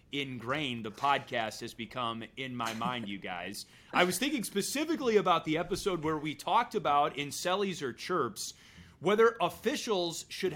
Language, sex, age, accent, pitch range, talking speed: English, male, 30-49, American, 130-190 Hz, 160 wpm